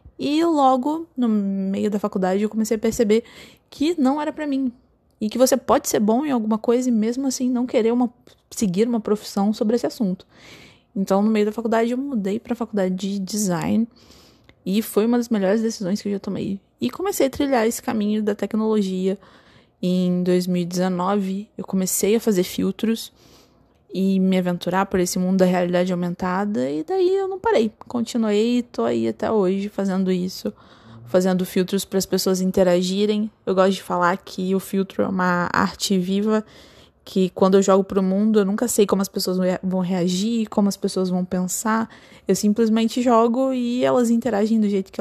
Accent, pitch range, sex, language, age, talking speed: Brazilian, 185-225 Hz, female, Portuguese, 20-39, 185 wpm